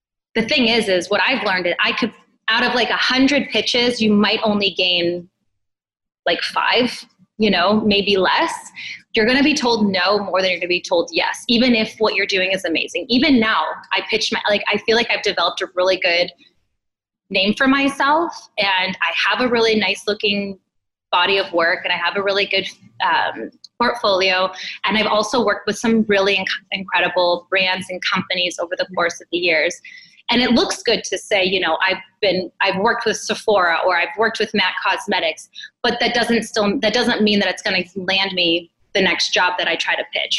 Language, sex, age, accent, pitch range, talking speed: English, female, 20-39, American, 185-225 Hz, 210 wpm